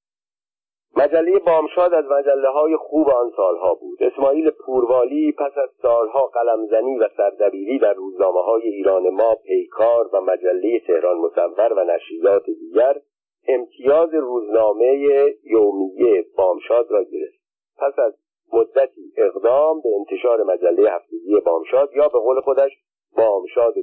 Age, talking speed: 50-69, 125 wpm